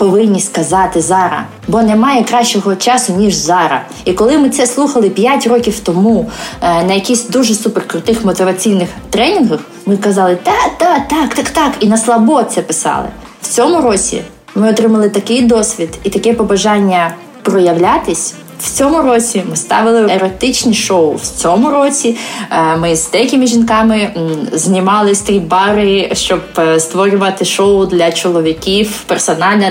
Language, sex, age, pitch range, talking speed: Ukrainian, female, 20-39, 185-230 Hz, 145 wpm